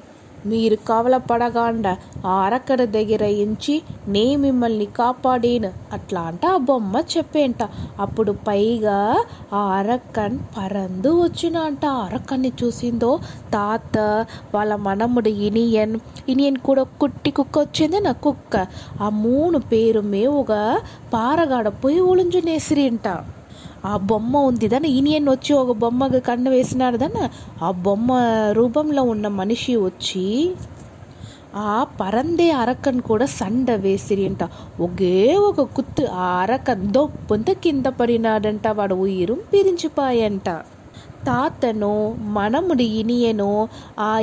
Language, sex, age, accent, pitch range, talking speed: Telugu, female, 20-39, native, 210-270 Hz, 110 wpm